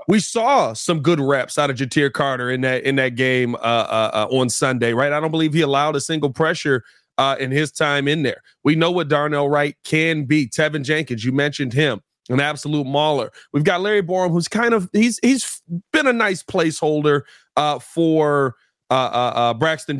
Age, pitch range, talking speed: 30-49, 130-160 Hz, 200 wpm